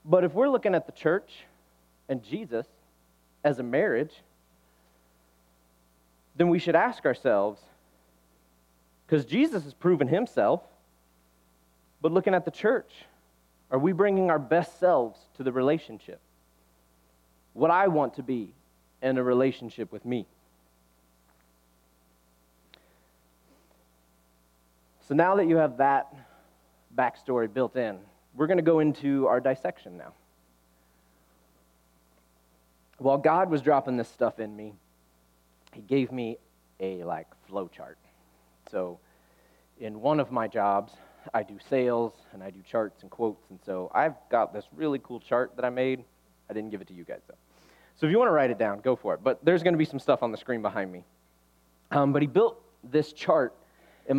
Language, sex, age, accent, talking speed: English, male, 30-49, American, 155 wpm